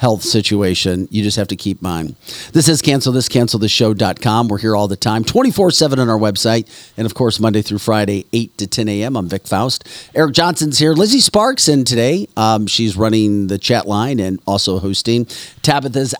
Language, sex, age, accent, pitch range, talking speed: English, male, 40-59, American, 110-140 Hz, 200 wpm